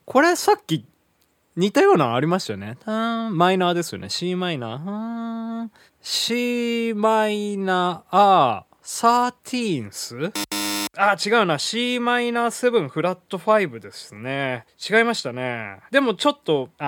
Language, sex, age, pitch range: Japanese, male, 20-39, 135-215 Hz